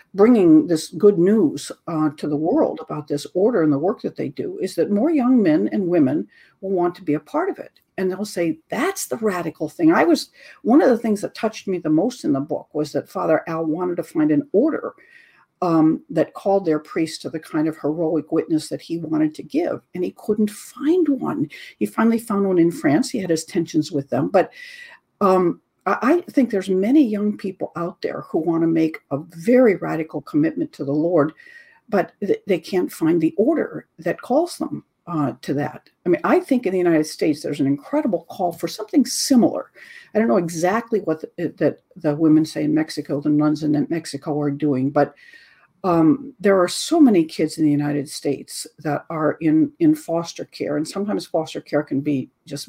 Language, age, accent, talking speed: English, 60-79, American, 210 wpm